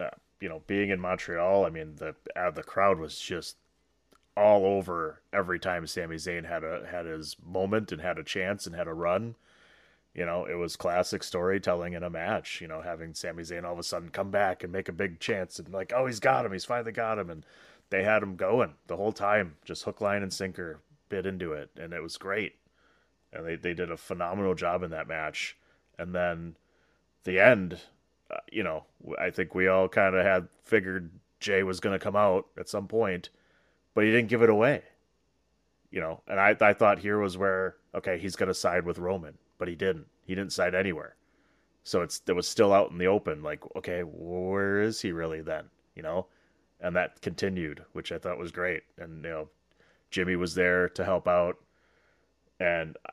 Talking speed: 210 wpm